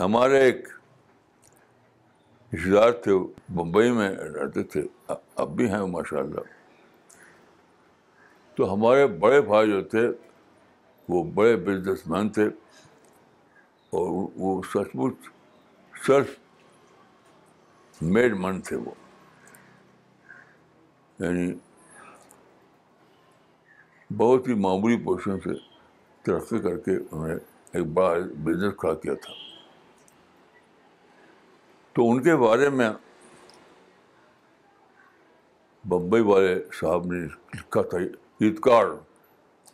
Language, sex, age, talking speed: Urdu, male, 60-79, 90 wpm